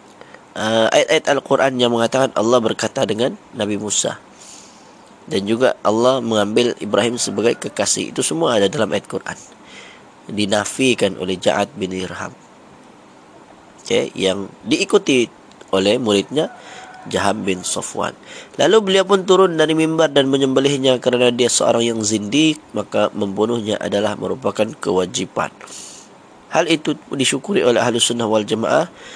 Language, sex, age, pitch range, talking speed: Malay, male, 20-39, 100-120 Hz, 125 wpm